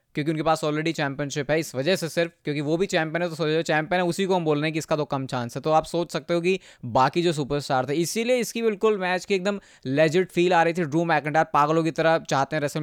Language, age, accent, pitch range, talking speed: Hindi, 20-39, native, 150-185 Hz, 275 wpm